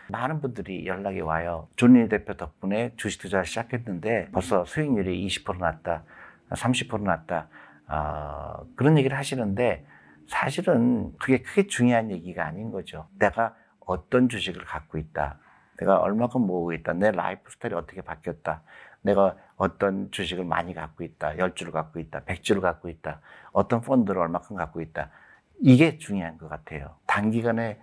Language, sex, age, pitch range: Korean, male, 60-79, 85-120 Hz